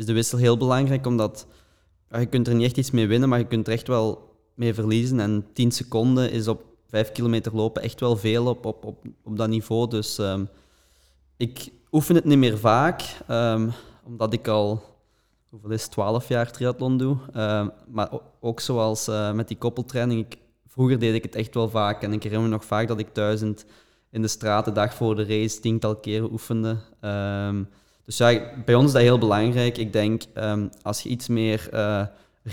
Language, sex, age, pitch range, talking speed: English, male, 20-39, 105-120 Hz, 200 wpm